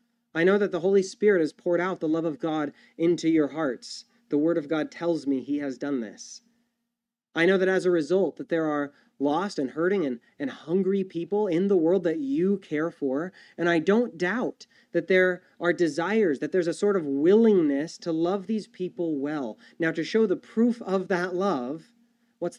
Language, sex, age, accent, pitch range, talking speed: English, male, 30-49, American, 140-210 Hz, 205 wpm